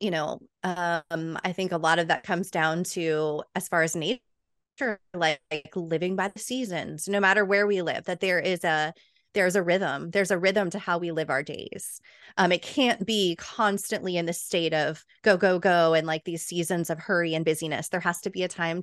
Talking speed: 220 wpm